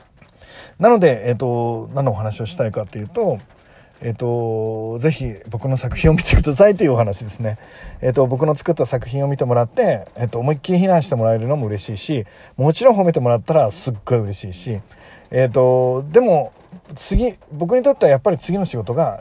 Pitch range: 120-165 Hz